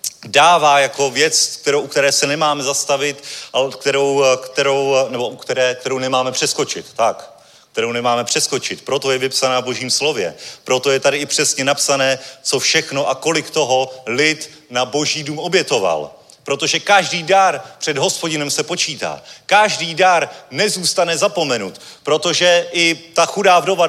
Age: 30-49